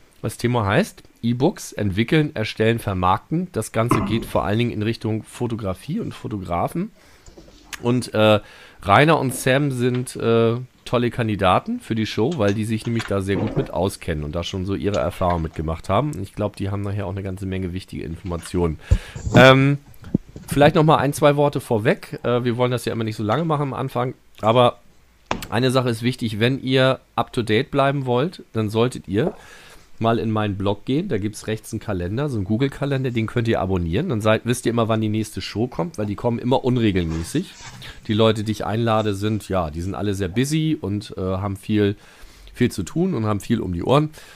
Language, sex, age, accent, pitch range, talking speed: English, male, 40-59, German, 100-125 Hz, 200 wpm